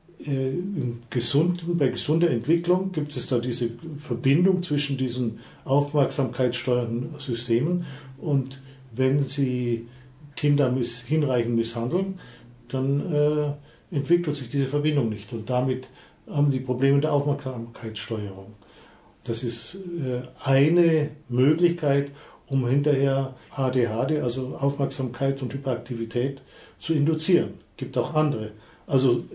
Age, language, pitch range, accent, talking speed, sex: 50-69, German, 125-155 Hz, German, 110 wpm, male